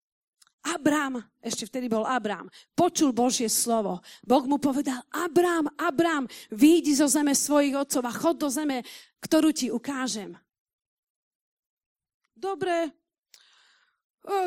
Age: 40-59